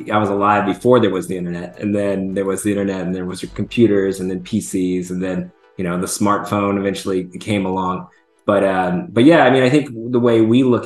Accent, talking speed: American, 240 wpm